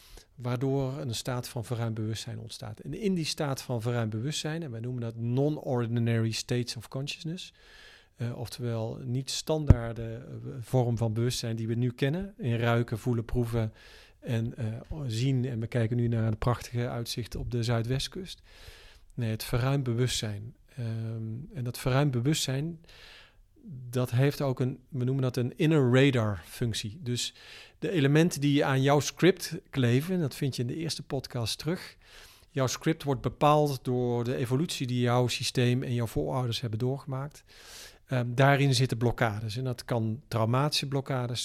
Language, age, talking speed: Dutch, 40-59, 160 wpm